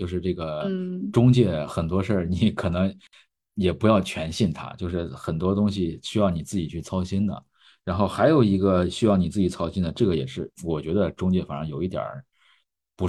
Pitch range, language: 90-120 Hz, Chinese